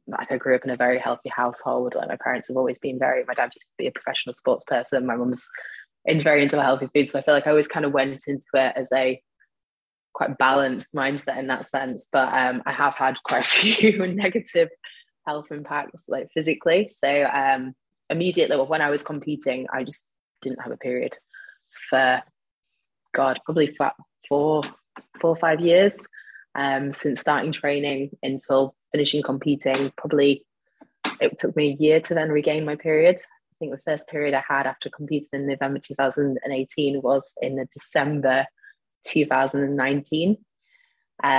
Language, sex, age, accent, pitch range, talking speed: English, female, 20-39, British, 135-170 Hz, 175 wpm